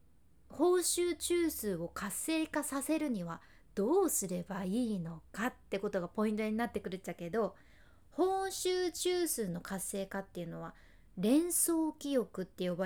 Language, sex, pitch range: Japanese, female, 205-320 Hz